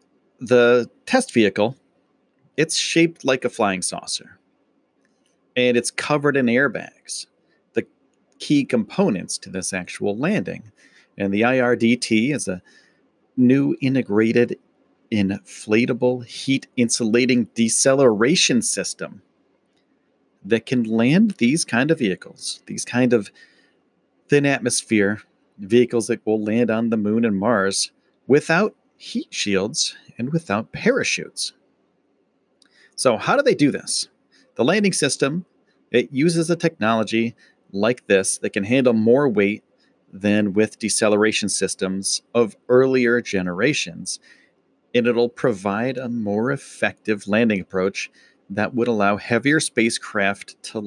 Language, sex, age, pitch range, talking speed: English, male, 40-59, 105-130 Hz, 120 wpm